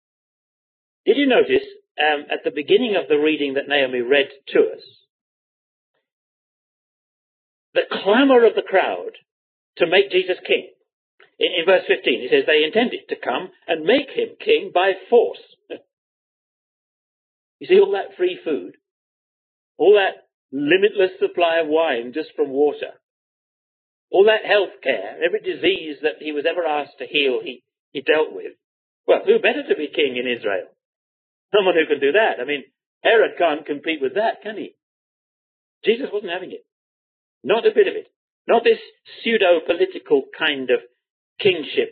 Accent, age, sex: British, 50-69, male